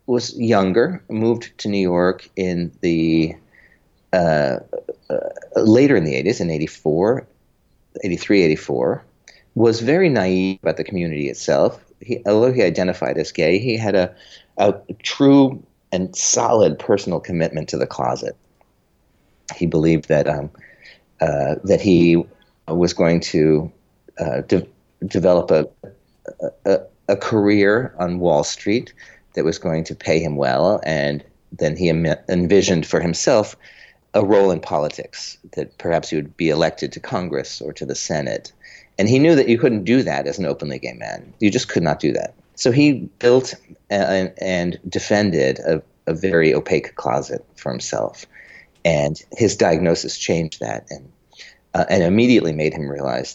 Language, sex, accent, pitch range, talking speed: English, male, American, 80-110 Hz, 155 wpm